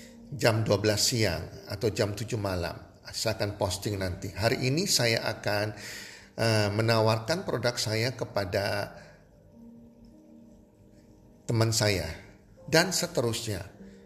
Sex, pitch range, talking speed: male, 100-125 Hz, 100 wpm